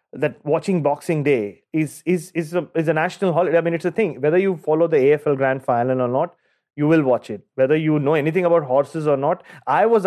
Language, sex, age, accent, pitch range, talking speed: English, male, 30-49, Indian, 130-165 Hz, 240 wpm